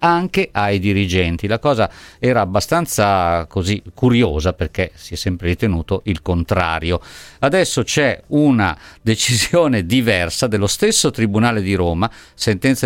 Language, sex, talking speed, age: Italian, male, 125 wpm, 50-69